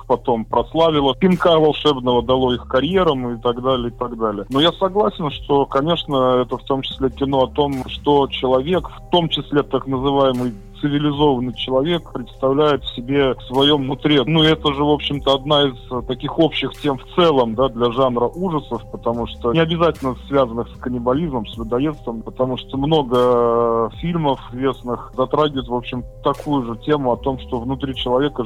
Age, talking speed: 20-39, 170 wpm